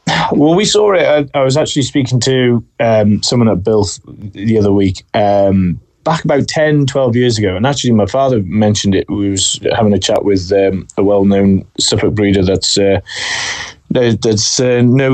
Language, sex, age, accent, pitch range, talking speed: English, male, 30-49, British, 105-130 Hz, 180 wpm